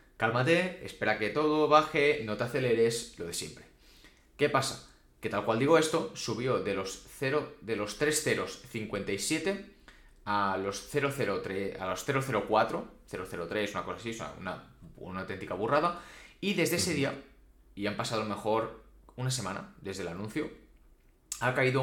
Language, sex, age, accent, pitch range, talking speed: Spanish, male, 20-39, Spanish, 110-145 Hz, 155 wpm